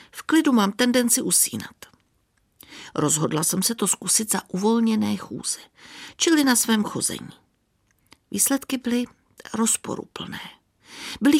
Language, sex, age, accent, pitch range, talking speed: Czech, female, 50-69, native, 190-290 Hz, 110 wpm